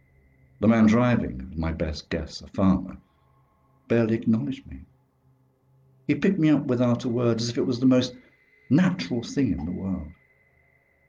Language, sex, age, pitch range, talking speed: English, male, 60-79, 85-110 Hz, 155 wpm